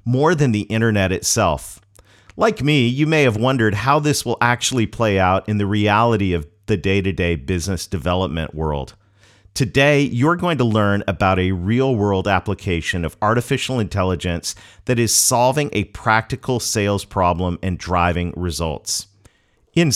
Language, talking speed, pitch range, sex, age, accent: English, 145 wpm, 90-125 Hz, male, 40-59, American